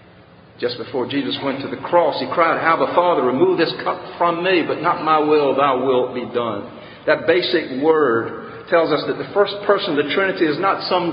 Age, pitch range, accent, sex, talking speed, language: 50-69, 120-170 Hz, American, male, 215 wpm, English